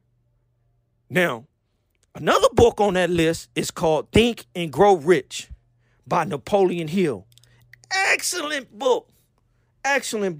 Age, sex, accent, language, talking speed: 40-59, male, American, English, 105 wpm